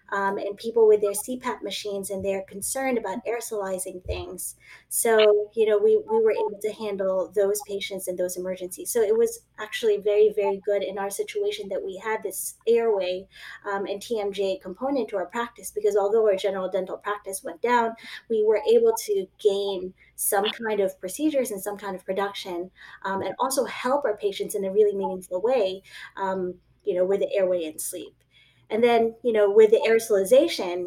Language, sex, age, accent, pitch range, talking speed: English, female, 20-39, American, 195-265 Hz, 190 wpm